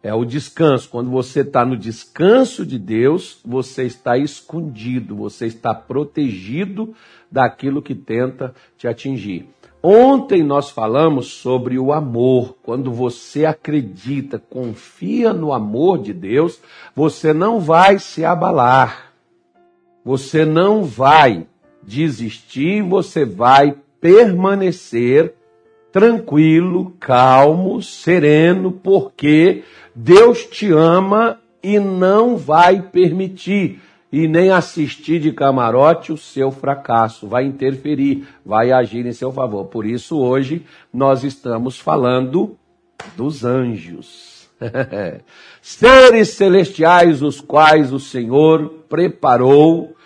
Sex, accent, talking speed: male, Brazilian, 105 wpm